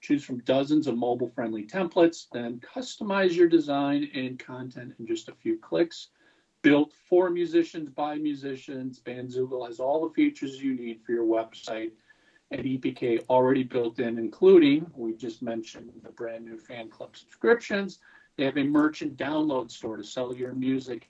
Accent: American